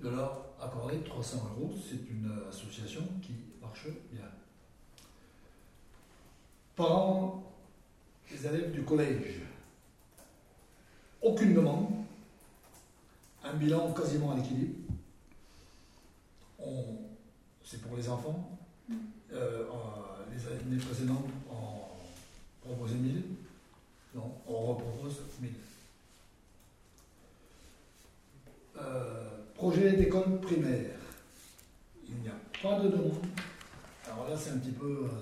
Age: 60-79